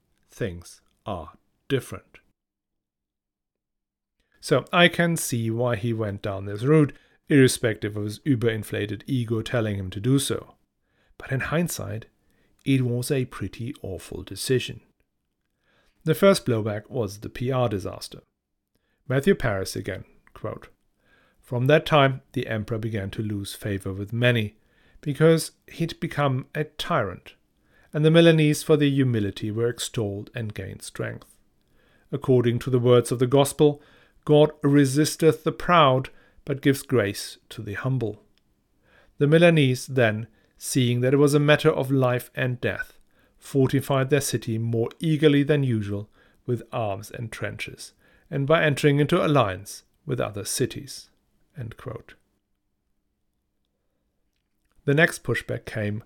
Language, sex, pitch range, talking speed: English, male, 105-145 Hz, 130 wpm